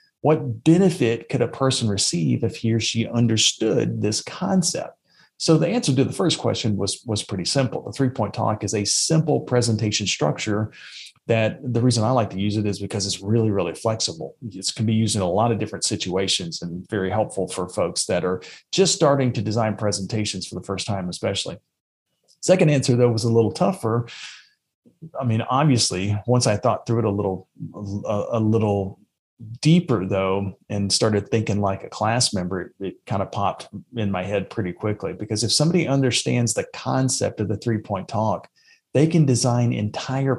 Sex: male